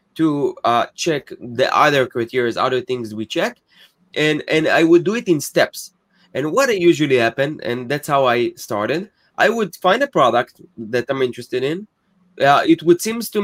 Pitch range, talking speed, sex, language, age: 140-185 Hz, 190 wpm, male, English, 20-39